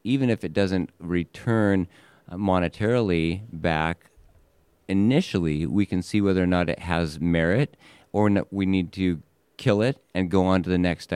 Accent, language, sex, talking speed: American, English, male, 160 wpm